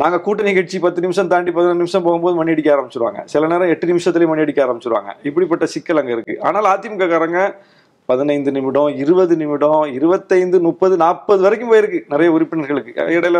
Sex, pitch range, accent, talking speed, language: male, 145-180 Hz, native, 150 wpm, Tamil